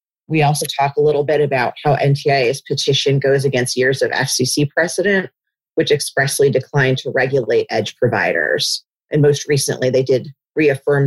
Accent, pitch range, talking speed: American, 130-150 Hz, 155 wpm